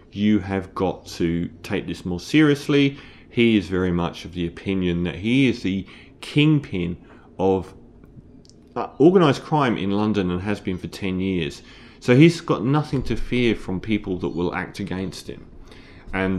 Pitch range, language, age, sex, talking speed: 90-105 Hz, English, 30-49, male, 165 wpm